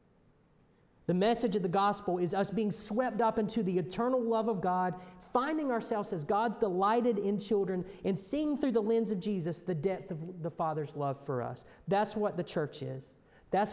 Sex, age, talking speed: male, 40-59, 190 wpm